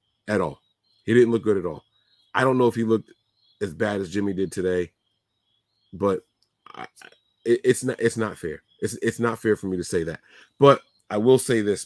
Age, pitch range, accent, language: 30-49, 100-115 Hz, American, English